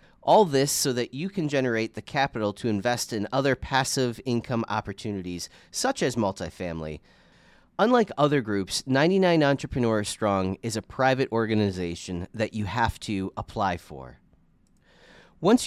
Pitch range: 105-140 Hz